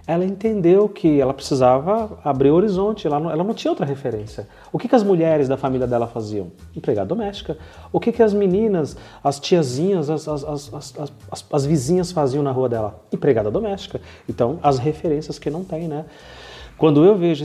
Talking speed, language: 185 wpm, Portuguese